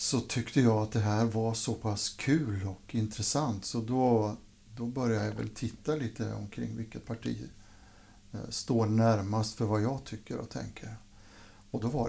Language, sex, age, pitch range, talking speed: Swedish, male, 60-79, 100-120 Hz, 170 wpm